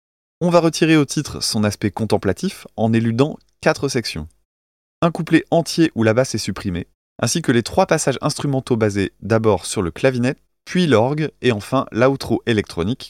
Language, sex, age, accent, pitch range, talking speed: French, male, 20-39, French, 105-150 Hz, 170 wpm